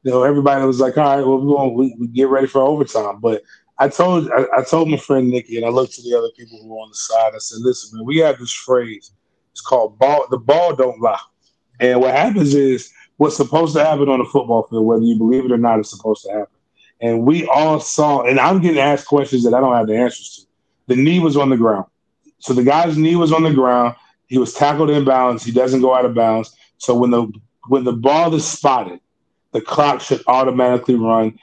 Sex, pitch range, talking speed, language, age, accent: male, 120-145 Hz, 245 wpm, English, 30-49, American